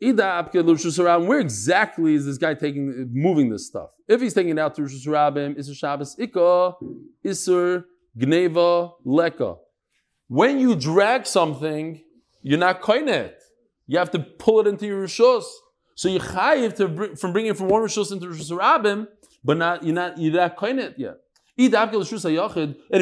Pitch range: 170-235 Hz